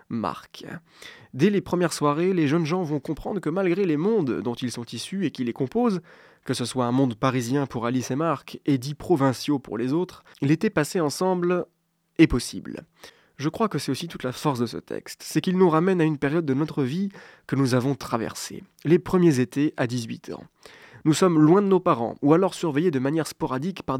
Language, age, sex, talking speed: French, 20-39, male, 220 wpm